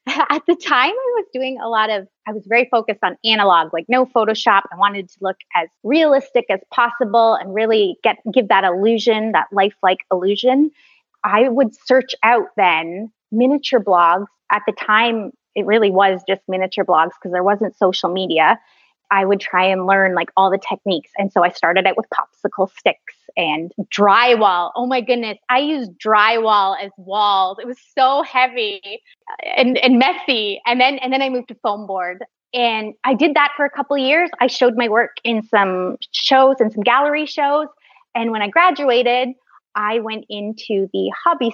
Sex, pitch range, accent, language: female, 195-255 Hz, American, English